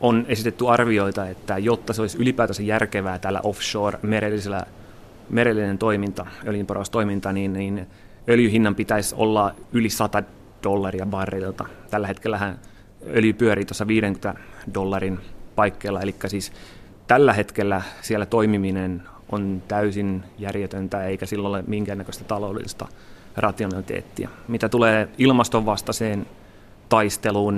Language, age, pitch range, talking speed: Finnish, 30-49, 100-110 Hz, 110 wpm